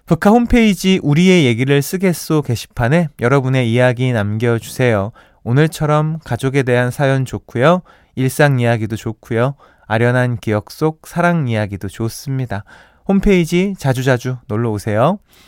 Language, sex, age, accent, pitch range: Korean, male, 20-39, native, 115-170 Hz